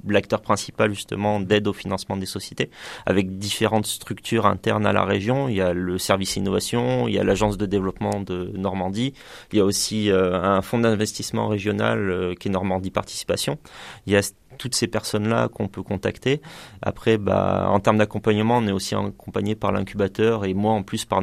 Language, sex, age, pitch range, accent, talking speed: French, male, 30-49, 95-110 Hz, French, 200 wpm